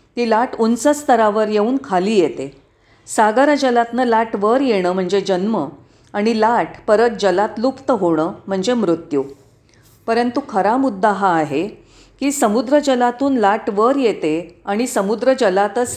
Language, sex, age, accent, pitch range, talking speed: Marathi, female, 40-59, native, 175-245 Hz, 125 wpm